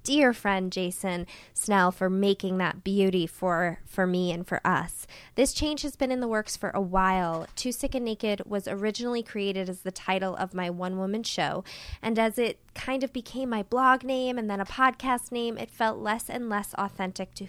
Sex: female